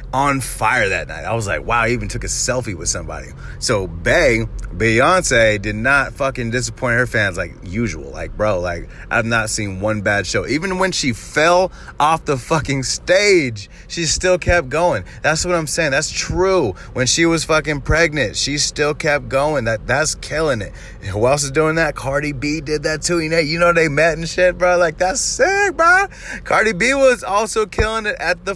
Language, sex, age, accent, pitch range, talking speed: English, male, 30-49, American, 105-160 Hz, 205 wpm